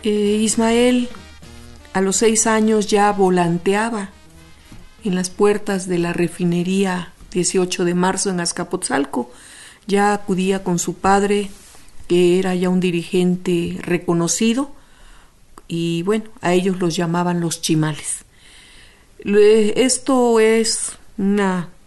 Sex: female